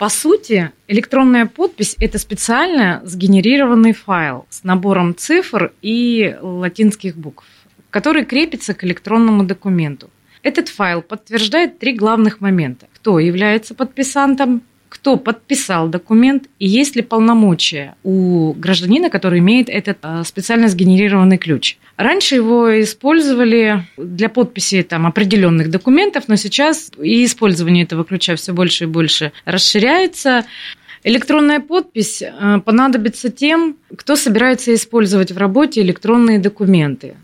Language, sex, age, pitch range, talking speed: Russian, female, 30-49, 185-250 Hz, 120 wpm